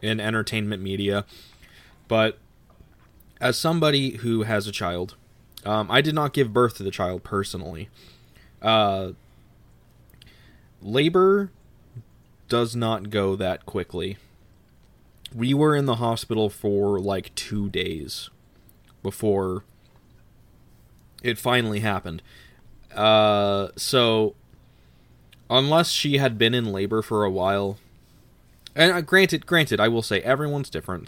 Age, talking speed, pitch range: 20-39, 115 wpm, 100-120 Hz